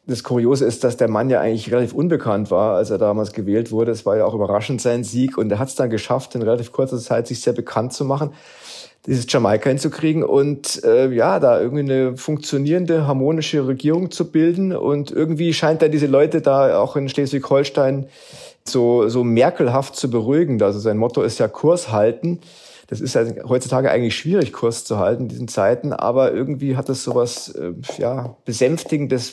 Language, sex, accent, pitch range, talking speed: German, male, German, 115-150 Hz, 190 wpm